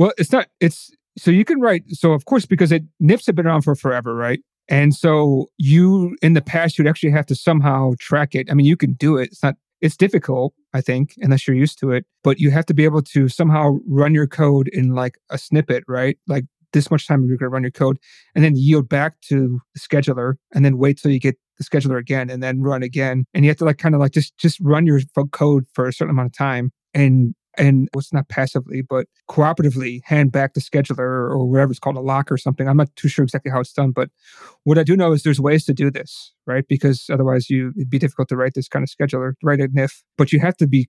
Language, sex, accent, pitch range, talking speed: English, male, American, 130-155 Hz, 255 wpm